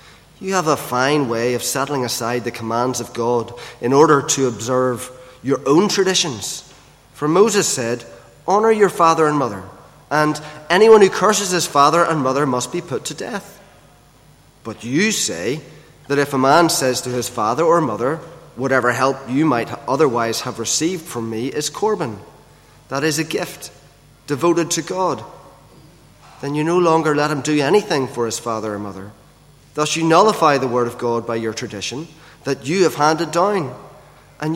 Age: 30-49